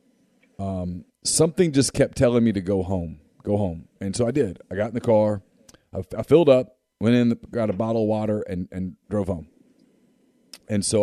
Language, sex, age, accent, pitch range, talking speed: English, male, 40-59, American, 95-110 Hz, 200 wpm